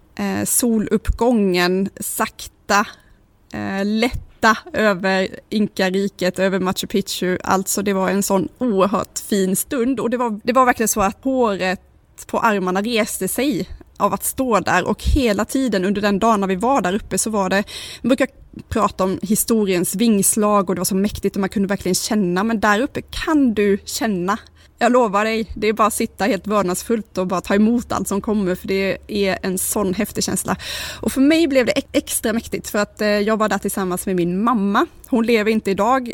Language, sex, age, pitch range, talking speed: Swedish, female, 20-39, 190-225 Hz, 190 wpm